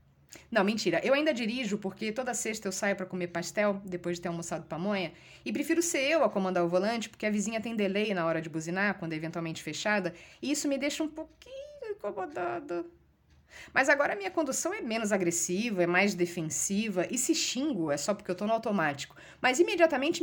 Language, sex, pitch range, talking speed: Portuguese, female, 175-240 Hz, 205 wpm